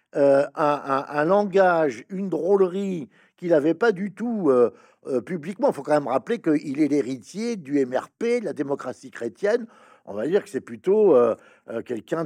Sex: male